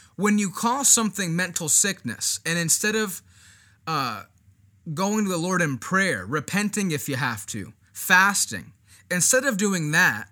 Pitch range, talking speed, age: 125-195 Hz, 150 wpm, 20-39